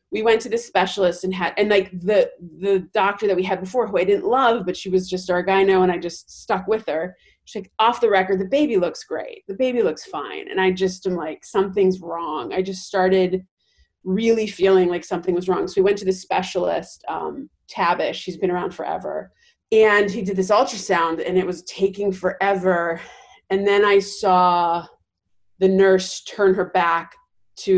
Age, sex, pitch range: 30-49, female, 180-210 Hz